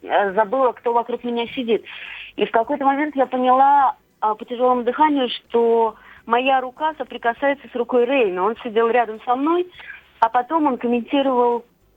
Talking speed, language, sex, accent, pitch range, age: 150 wpm, Russian, female, native, 205-250 Hz, 30-49